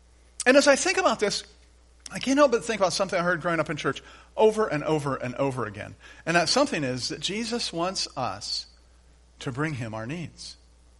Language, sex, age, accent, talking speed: English, male, 50-69, American, 205 wpm